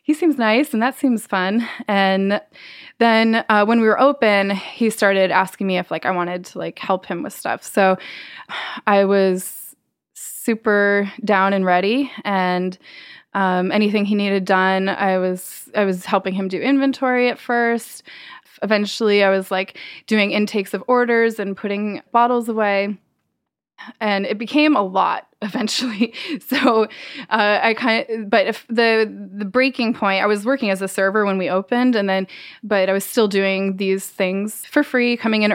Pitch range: 190-225 Hz